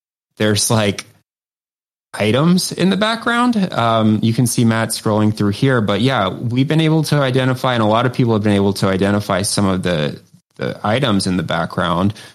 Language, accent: English, American